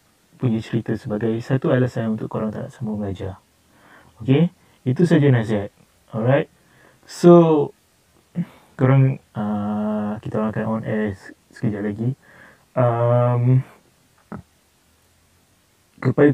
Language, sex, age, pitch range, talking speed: Malay, male, 20-39, 110-130 Hz, 100 wpm